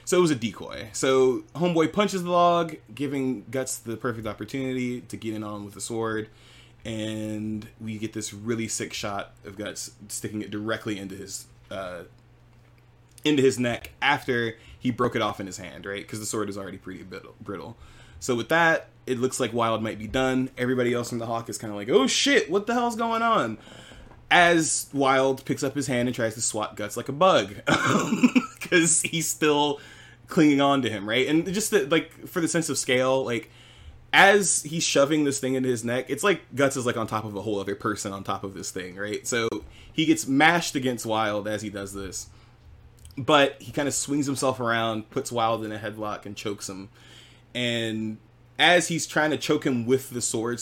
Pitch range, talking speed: 110-140 Hz, 205 wpm